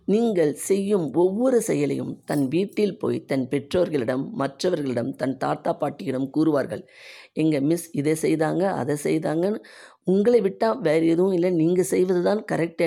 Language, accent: Tamil, native